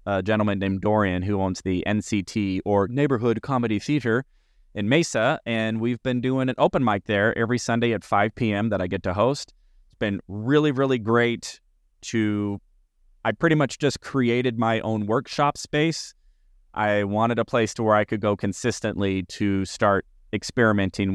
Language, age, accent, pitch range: English, 30-49, American, 95-115 Hz